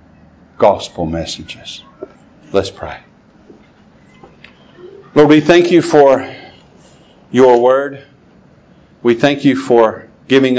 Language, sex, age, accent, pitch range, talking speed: English, male, 50-69, American, 105-140 Hz, 90 wpm